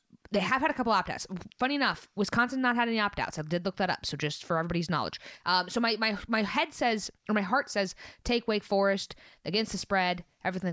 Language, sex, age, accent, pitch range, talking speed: English, female, 20-39, American, 165-205 Hz, 230 wpm